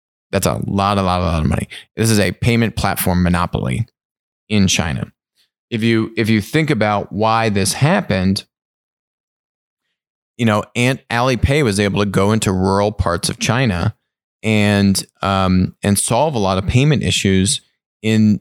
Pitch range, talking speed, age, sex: 95-110 Hz, 165 wpm, 20-39, male